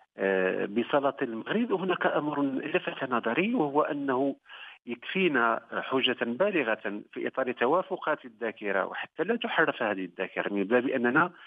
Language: Arabic